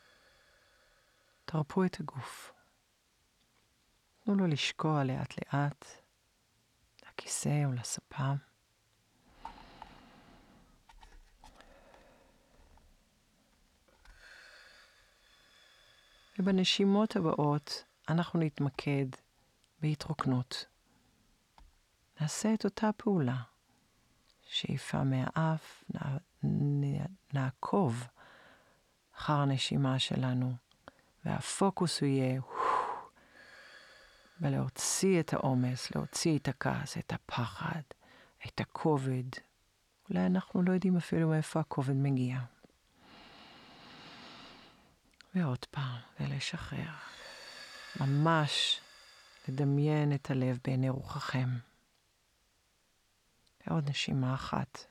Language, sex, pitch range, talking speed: Hebrew, female, 130-170 Hz, 35 wpm